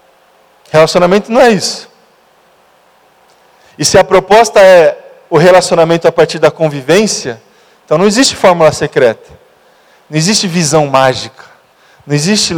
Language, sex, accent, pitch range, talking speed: Portuguese, male, Brazilian, 150-205 Hz, 125 wpm